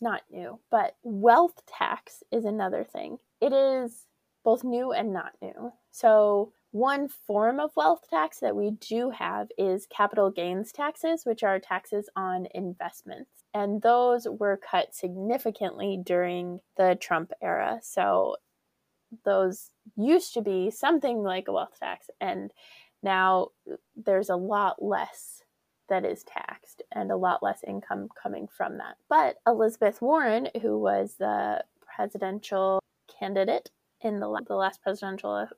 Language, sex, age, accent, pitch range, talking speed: English, female, 20-39, American, 195-245 Hz, 140 wpm